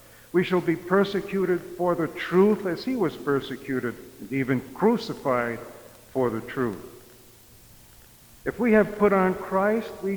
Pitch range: 115-175 Hz